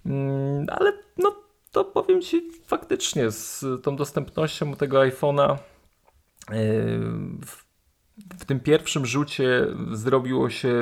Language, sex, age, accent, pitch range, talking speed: Polish, male, 30-49, native, 110-145 Hz, 95 wpm